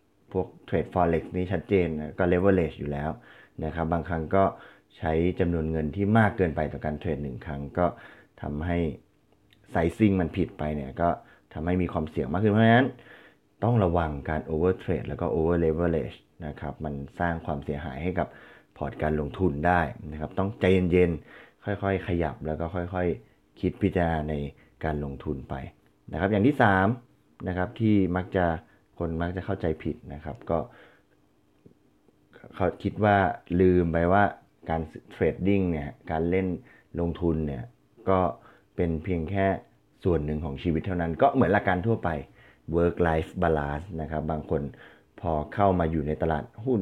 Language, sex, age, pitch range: Thai, male, 20-39, 80-95 Hz